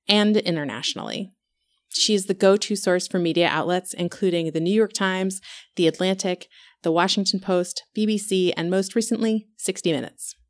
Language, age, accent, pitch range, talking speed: English, 30-49, American, 165-210 Hz, 155 wpm